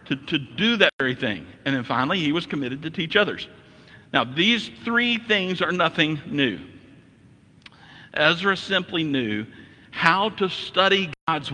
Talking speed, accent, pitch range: 150 wpm, American, 120-165 Hz